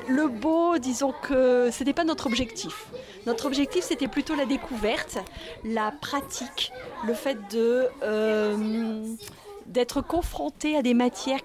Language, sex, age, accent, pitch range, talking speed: French, female, 50-69, French, 210-270 Hz, 135 wpm